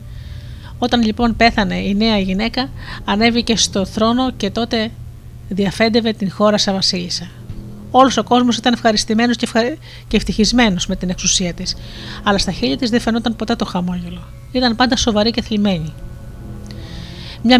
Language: Greek